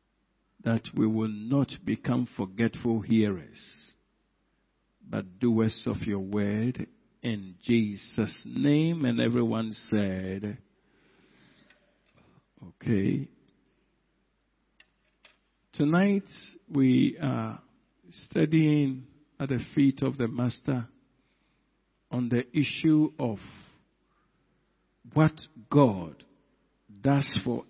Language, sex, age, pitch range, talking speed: English, male, 50-69, 110-140 Hz, 80 wpm